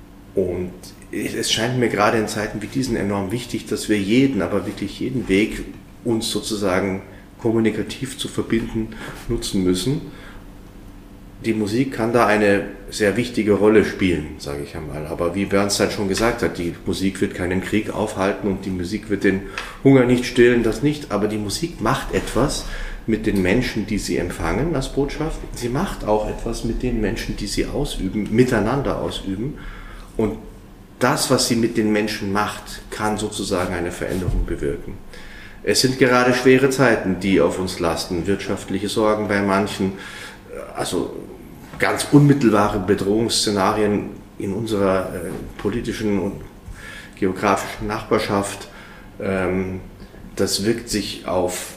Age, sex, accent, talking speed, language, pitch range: 30-49, male, German, 145 wpm, German, 95-115 Hz